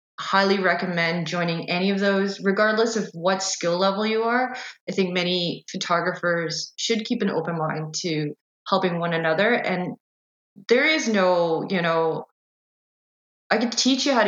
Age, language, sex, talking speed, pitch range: 20-39, English, female, 155 wpm, 165-205 Hz